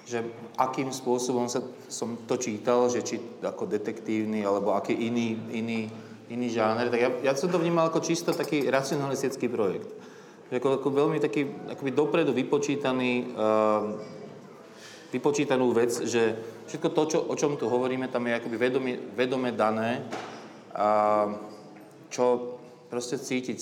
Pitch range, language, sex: 115-135 Hz, Slovak, male